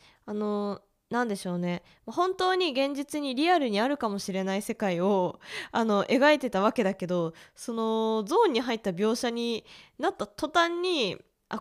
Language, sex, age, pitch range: Japanese, female, 20-39, 200-285 Hz